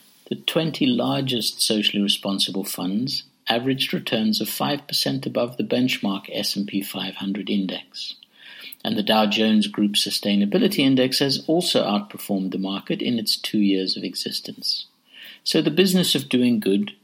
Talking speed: 140 wpm